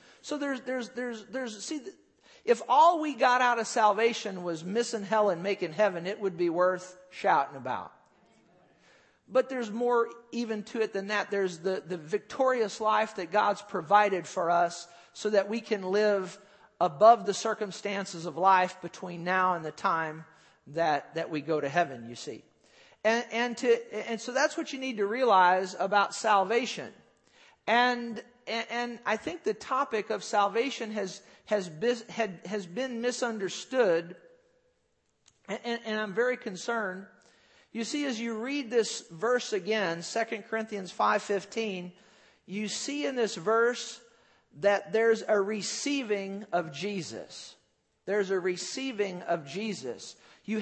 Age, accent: 50-69, American